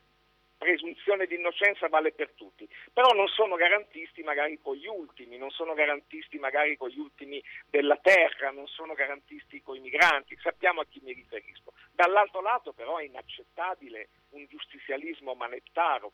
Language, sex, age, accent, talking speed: Italian, male, 50-69, native, 155 wpm